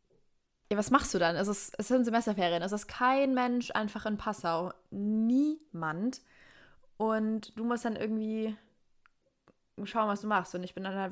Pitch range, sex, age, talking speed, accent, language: 185-215 Hz, female, 20-39, 175 wpm, German, German